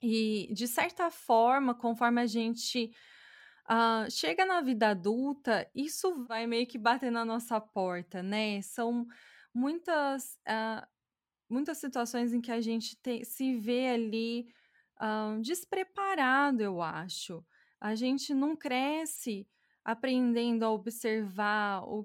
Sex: female